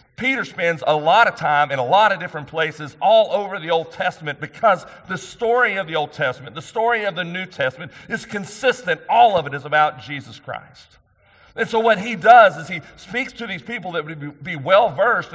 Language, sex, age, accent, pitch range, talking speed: English, male, 40-59, American, 135-185 Hz, 210 wpm